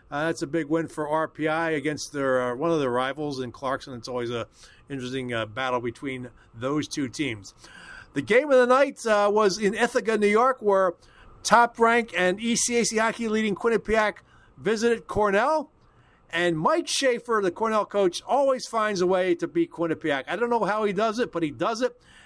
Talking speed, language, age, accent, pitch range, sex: 190 wpm, English, 50-69, American, 145-215 Hz, male